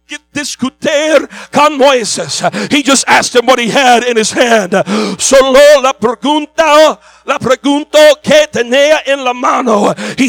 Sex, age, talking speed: male, 50-69, 140 wpm